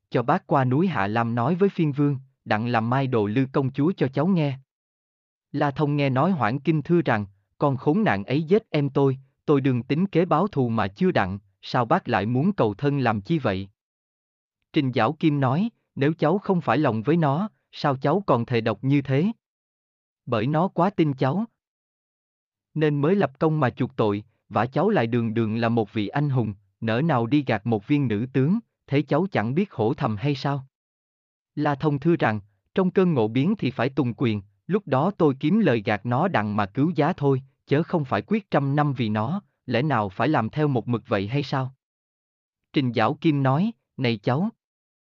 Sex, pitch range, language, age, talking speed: male, 110-155 Hz, Vietnamese, 20-39, 210 wpm